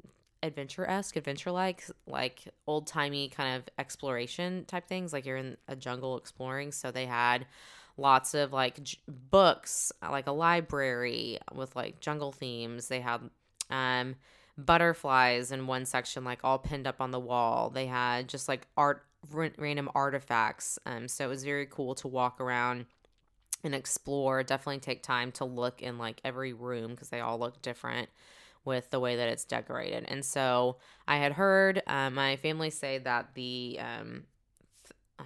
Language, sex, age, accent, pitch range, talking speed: English, female, 20-39, American, 125-145 Hz, 165 wpm